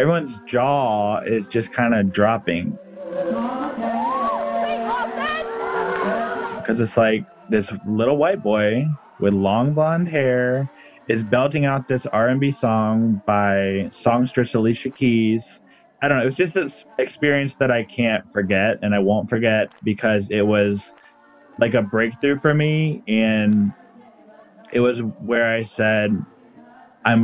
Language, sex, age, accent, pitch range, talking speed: English, male, 20-39, American, 110-165 Hz, 130 wpm